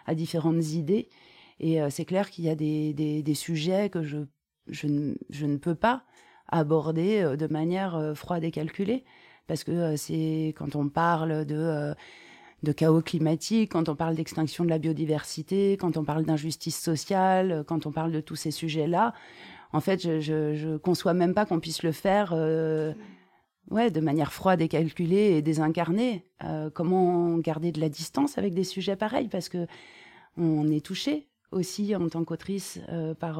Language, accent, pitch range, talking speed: French, French, 160-190 Hz, 185 wpm